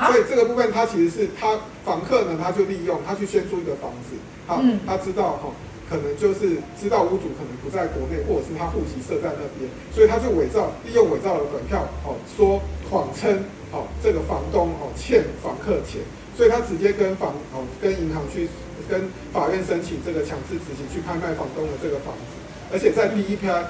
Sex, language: male, Chinese